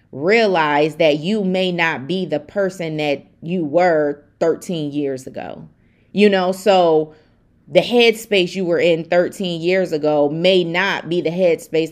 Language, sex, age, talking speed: English, female, 30-49, 150 wpm